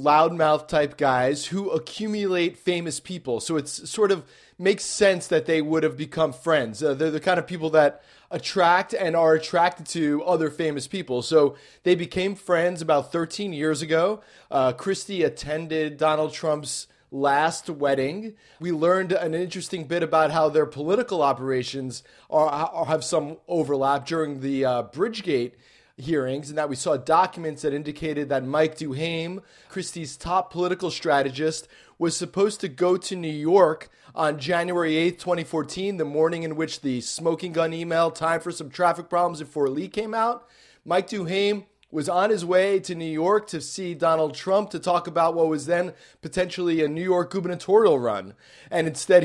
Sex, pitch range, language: male, 150-180 Hz, English